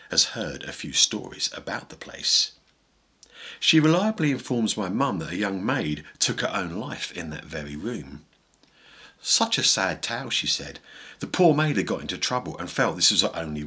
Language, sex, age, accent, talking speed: English, male, 50-69, British, 195 wpm